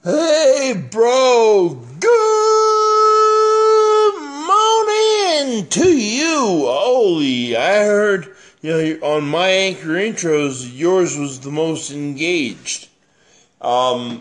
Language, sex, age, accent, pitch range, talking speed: English, male, 50-69, American, 130-180 Hz, 90 wpm